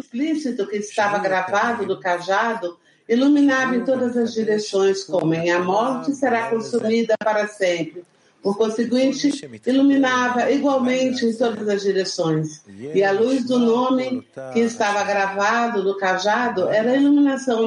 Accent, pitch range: Brazilian, 190-255 Hz